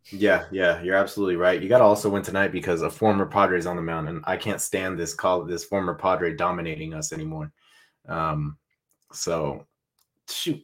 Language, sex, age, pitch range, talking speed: English, male, 20-39, 90-130 Hz, 180 wpm